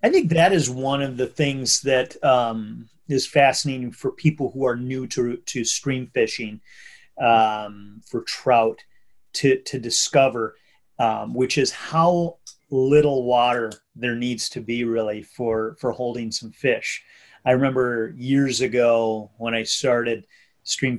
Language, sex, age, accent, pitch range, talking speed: English, male, 30-49, American, 115-135 Hz, 145 wpm